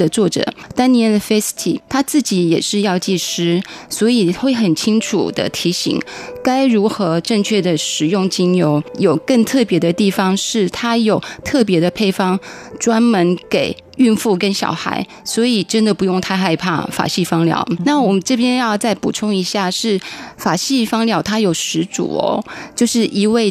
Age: 20-39